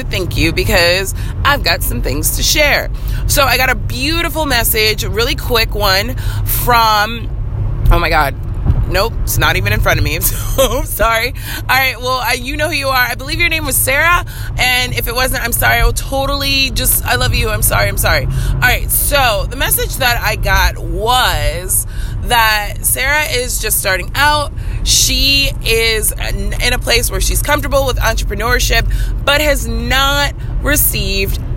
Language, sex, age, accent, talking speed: English, female, 30-49, American, 175 wpm